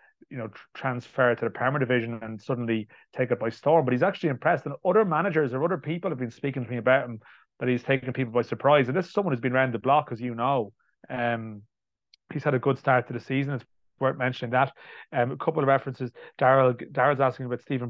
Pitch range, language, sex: 120-135 Hz, English, male